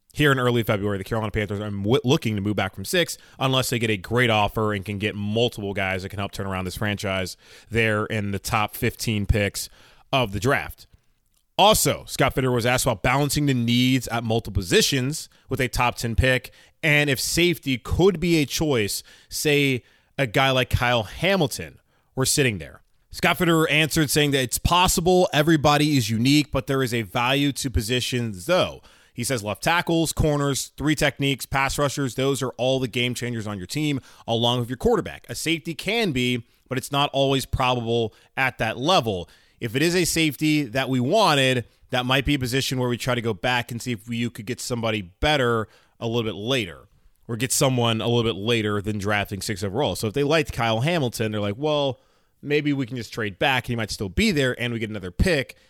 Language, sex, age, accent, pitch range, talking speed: English, male, 20-39, American, 110-140 Hz, 210 wpm